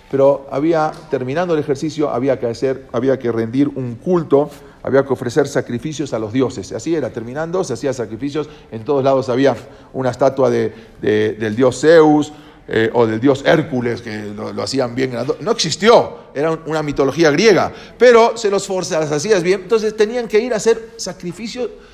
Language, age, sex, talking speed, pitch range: English, 40-59, male, 185 wpm, 125-180 Hz